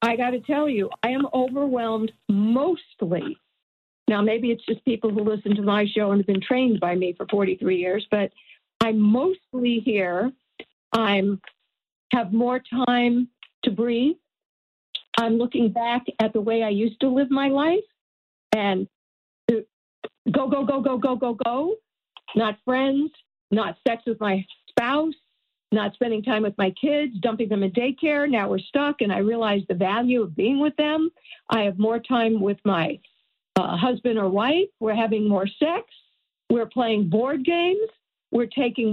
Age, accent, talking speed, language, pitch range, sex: 50-69, American, 165 wpm, English, 215-270 Hz, female